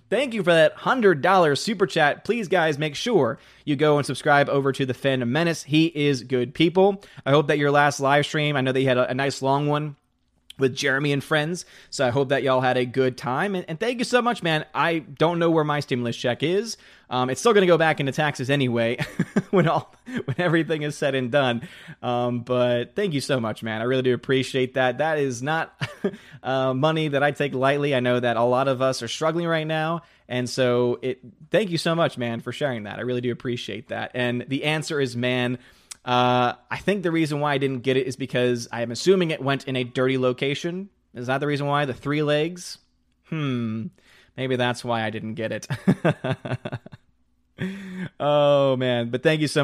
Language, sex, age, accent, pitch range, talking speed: English, male, 20-39, American, 125-160 Hz, 220 wpm